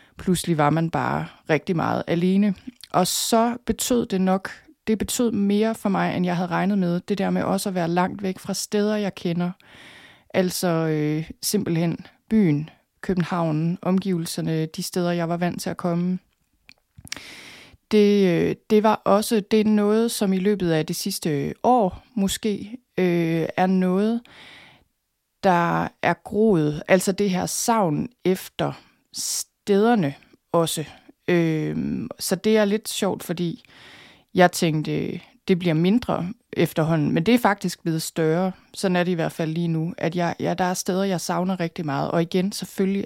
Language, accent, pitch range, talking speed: Danish, native, 170-205 Hz, 165 wpm